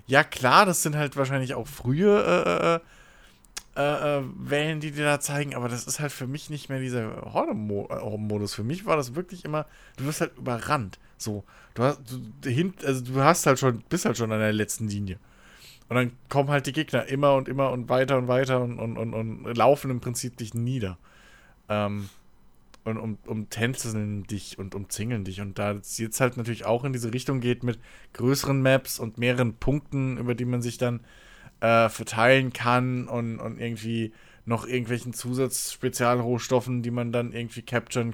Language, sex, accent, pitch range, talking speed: German, male, German, 110-135 Hz, 185 wpm